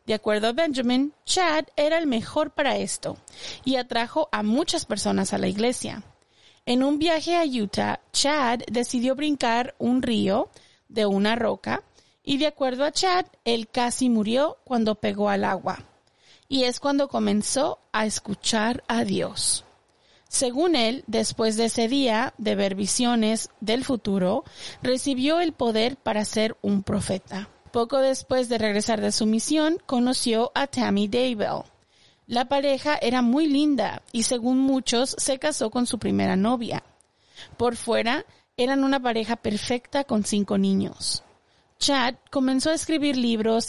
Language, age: Spanish, 30-49